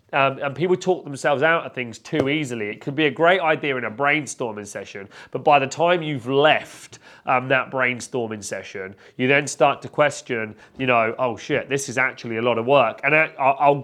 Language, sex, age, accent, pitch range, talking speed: English, male, 30-49, British, 120-150 Hz, 210 wpm